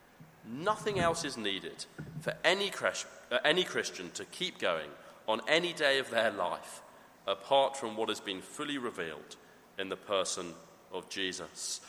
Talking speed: 145 wpm